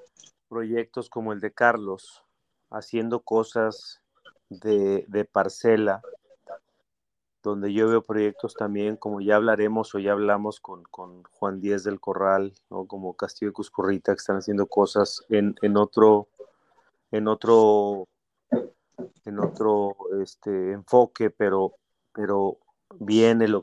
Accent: Mexican